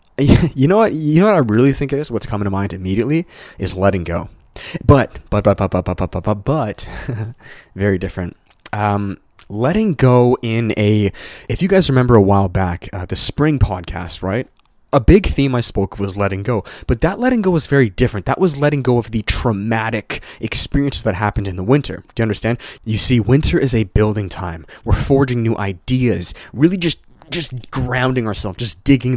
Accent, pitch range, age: American, 100-130 Hz, 20-39